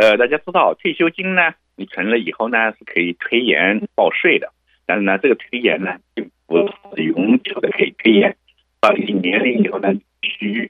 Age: 50-69